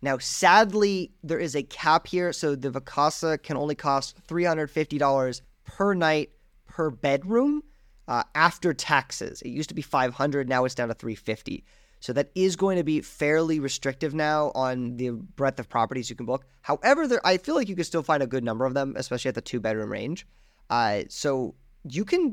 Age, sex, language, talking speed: 30-49, male, English, 190 wpm